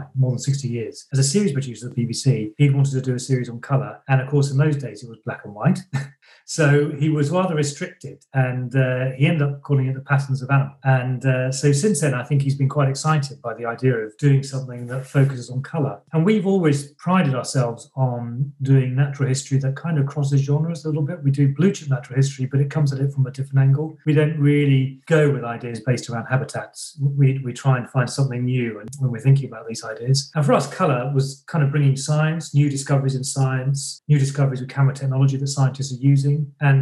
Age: 40-59